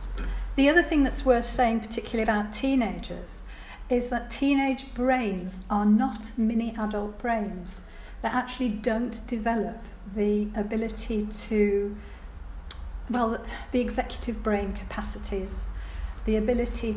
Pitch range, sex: 200-240 Hz, female